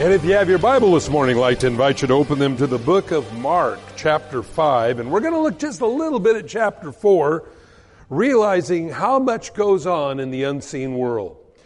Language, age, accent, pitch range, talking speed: English, 50-69, American, 150-210 Hz, 225 wpm